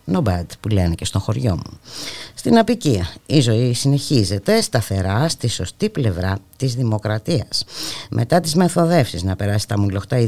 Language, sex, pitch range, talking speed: Greek, female, 100-145 Hz, 160 wpm